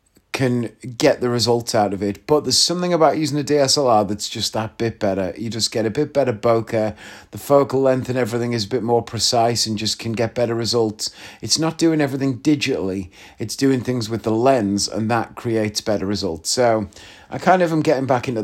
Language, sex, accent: English, male, British